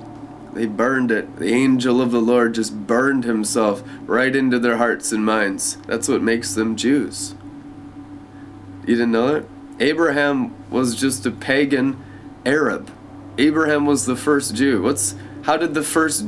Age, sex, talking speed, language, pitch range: 20-39, male, 155 wpm, English, 110-145 Hz